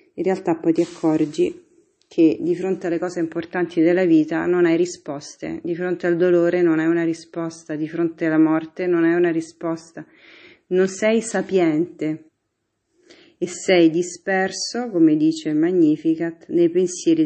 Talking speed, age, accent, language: 150 wpm, 40-59, native, Italian